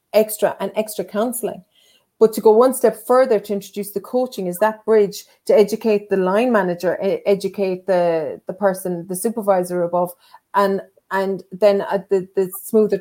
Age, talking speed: 30-49, 160 wpm